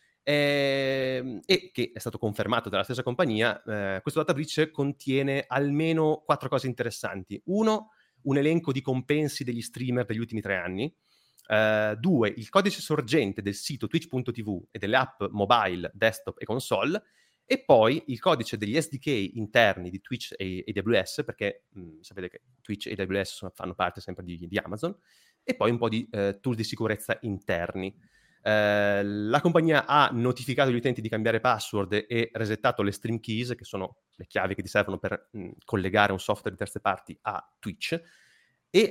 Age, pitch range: 30-49, 105-135 Hz